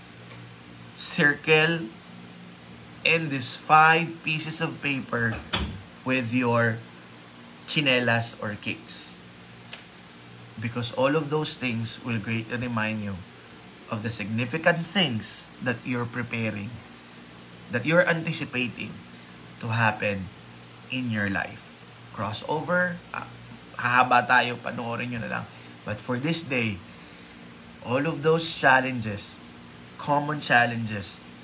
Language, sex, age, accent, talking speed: Filipino, male, 20-39, native, 100 wpm